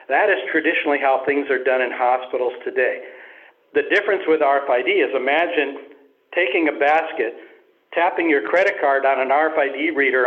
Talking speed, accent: 160 wpm, American